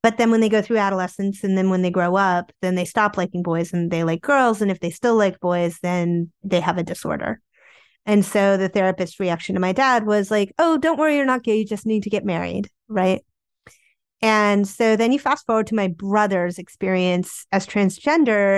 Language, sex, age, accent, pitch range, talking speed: English, female, 30-49, American, 185-230 Hz, 220 wpm